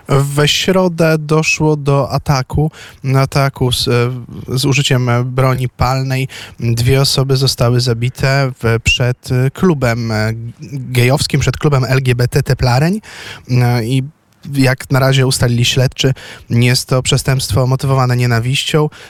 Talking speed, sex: 115 wpm, male